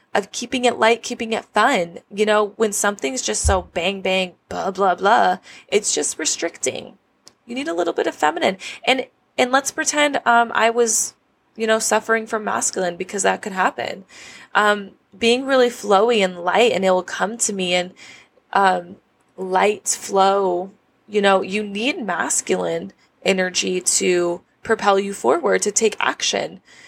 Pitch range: 185-225 Hz